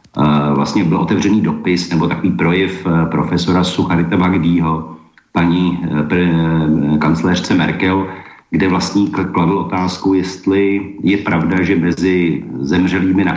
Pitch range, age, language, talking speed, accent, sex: 90-105 Hz, 50-69, Czech, 110 wpm, native, male